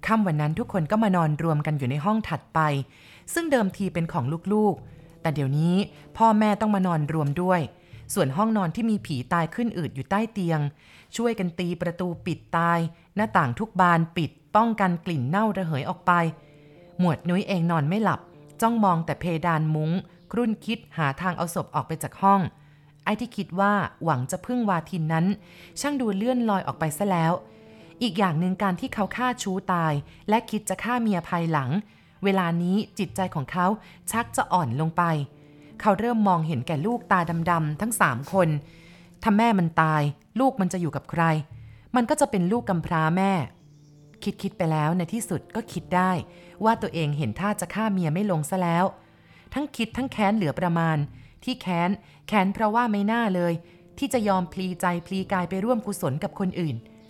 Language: Thai